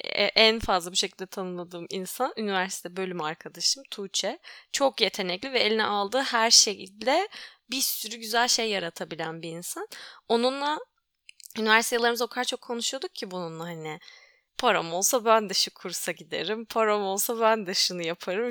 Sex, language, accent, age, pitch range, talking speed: female, Turkish, native, 10-29, 190-255 Hz, 150 wpm